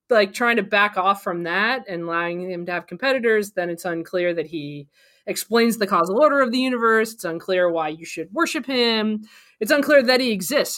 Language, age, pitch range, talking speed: English, 20-39, 170-220 Hz, 205 wpm